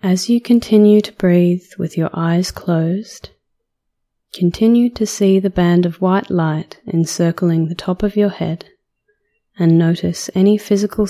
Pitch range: 165-195 Hz